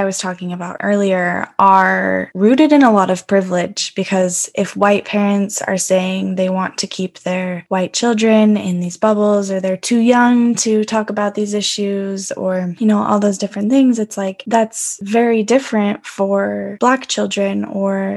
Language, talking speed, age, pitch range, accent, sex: English, 170 wpm, 10-29, 190-210 Hz, American, female